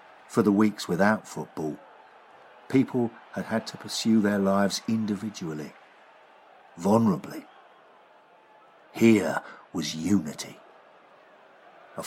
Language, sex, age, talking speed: English, male, 50-69, 90 wpm